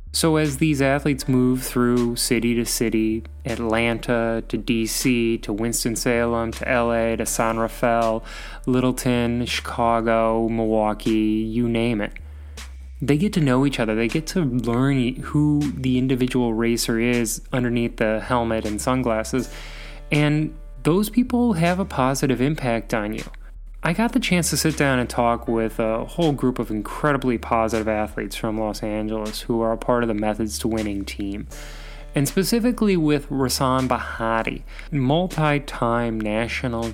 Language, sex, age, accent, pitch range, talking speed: English, male, 20-39, American, 115-135 Hz, 150 wpm